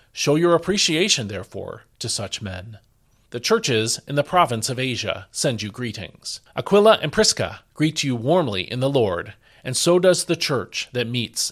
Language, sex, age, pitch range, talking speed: English, male, 40-59, 110-155 Hz, 170 wpm